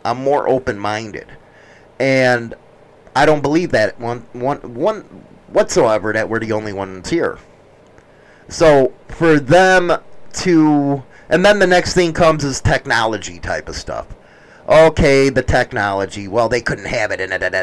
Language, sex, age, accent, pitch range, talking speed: English, male, 30-49, American, 120-165 Hz, 150 wpm